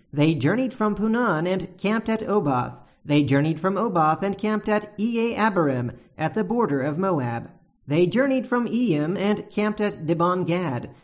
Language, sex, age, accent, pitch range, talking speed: English, male, 40-59, American, 150-210 Hz, 160 wpm